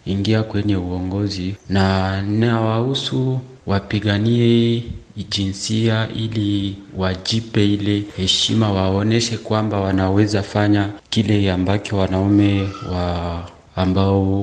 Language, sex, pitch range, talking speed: Swahili, male, 95-110 Hz, 85 wpm